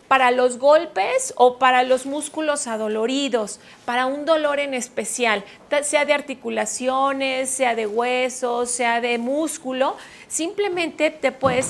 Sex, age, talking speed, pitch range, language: female, 40-59, 130 wpm, 245-290 Hz, Spanish